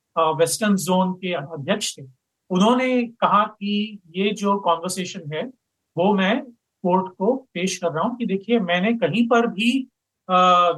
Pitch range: 170-210 Hz